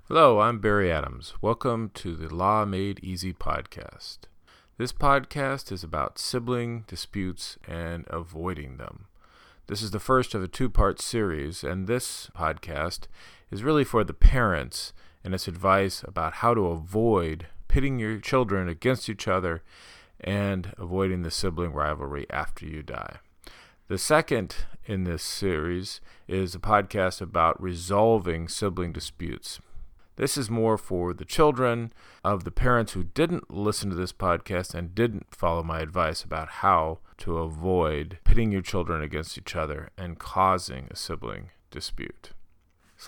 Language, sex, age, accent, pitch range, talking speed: English, male, 40-59, American, 85-110 Hz, 145 wpm